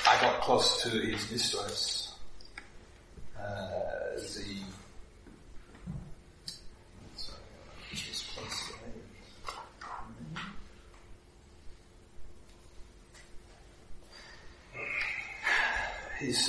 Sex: male